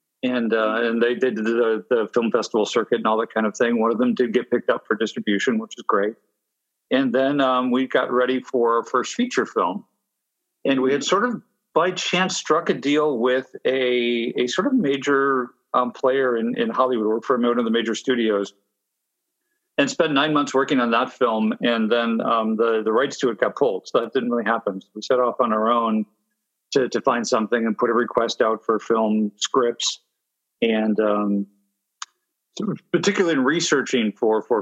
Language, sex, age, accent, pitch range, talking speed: English, male, 50-69, American, 110-140 Hz, 205 wpm